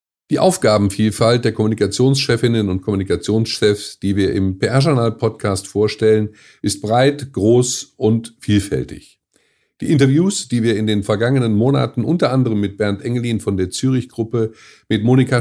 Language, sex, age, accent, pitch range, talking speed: German, male, 50-69, German, 105-140 Hz, 130 wpm